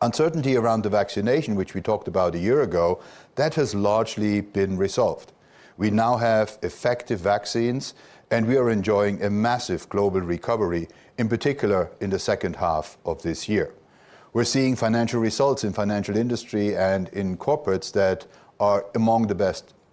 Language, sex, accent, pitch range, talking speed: English, male, German, 95-120 Hz, 160 wpm